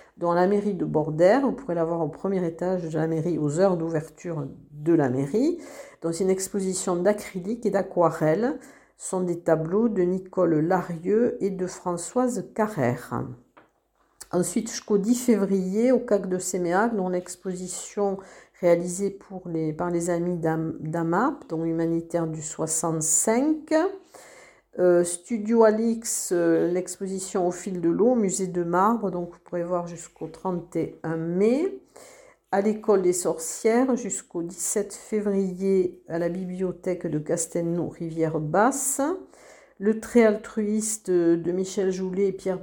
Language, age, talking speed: French, 50-69, 140 wpm